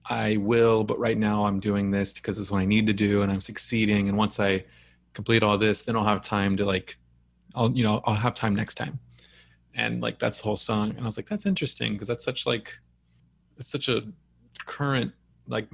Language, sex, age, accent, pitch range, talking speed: English, male, 20-39, American, 105-120 Hz, 225 wpm